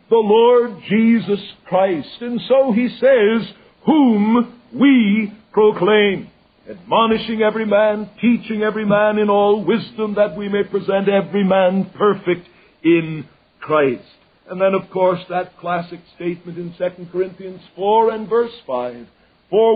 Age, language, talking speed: 60-79, English, 135 wpm